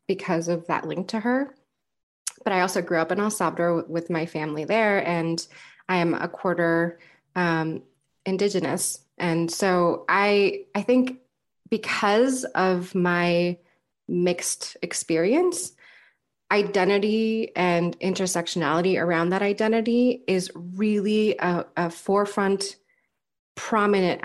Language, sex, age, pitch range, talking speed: English, female, 20-39, 170-205 Hz, 115 wpm